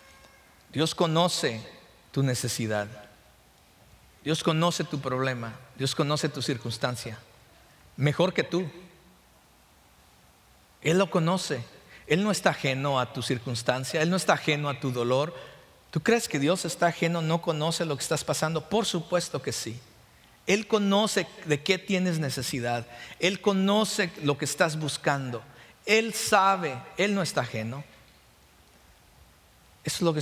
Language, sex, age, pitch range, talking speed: English, male, 50-69, 120-165 Hz, 140 wpm